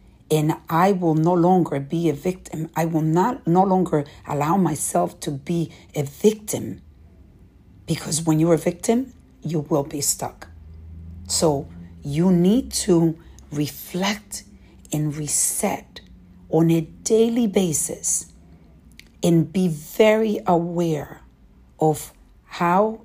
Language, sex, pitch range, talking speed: English, female, 140-180 Hz, 120 wpm